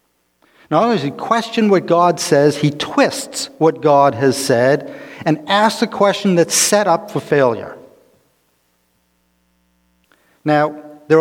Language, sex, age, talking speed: English, male, 50-69, 135 wpm